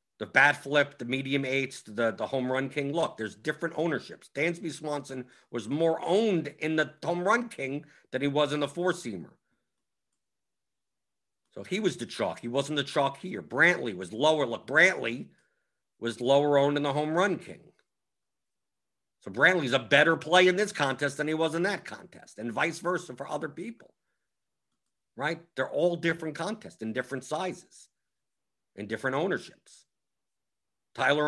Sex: male